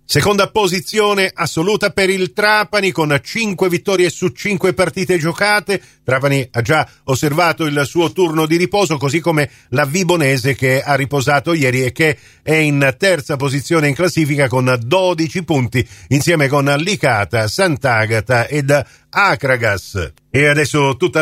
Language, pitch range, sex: Italian, 130-180 Hz, male